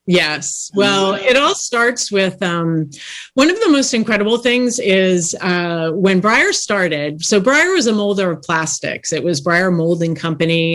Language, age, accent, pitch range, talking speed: English, 30-49, American, 170-215 Hz, 170 wpm